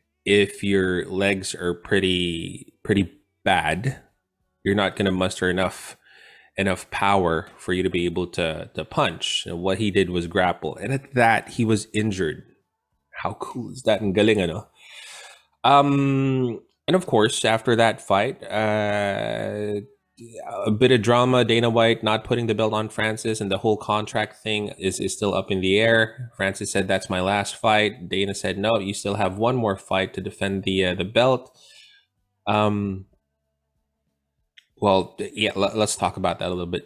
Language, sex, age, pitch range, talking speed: Filipino, male, 20-39, 95-115 Hz, 170 wpm